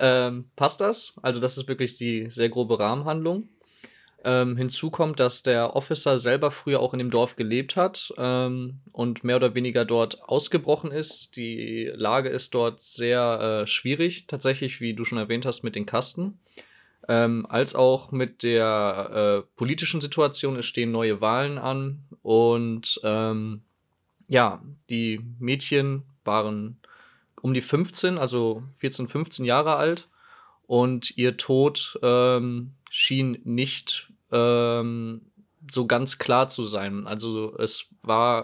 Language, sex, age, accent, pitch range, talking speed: German, male, 20-39, German, 115-135 Hz, 140 wpm